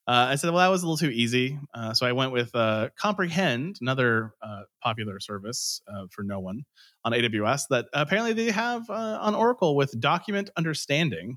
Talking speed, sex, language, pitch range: 195 wpm, male, English, 105-140 Hz